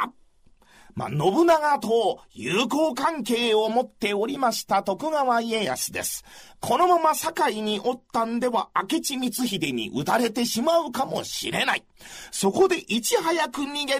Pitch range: 220-315 Hz